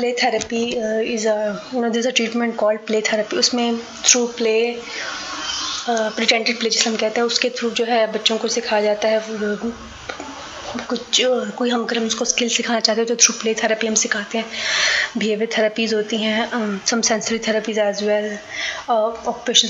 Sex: female